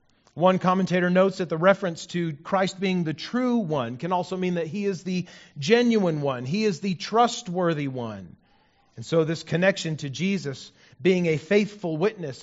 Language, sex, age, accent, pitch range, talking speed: English, male, 40-59, American, 135-190 Hz, 175 wpm